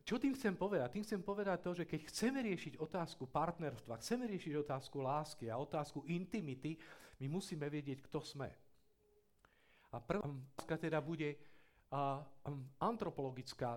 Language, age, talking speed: Czech, 50-69, 135 wpm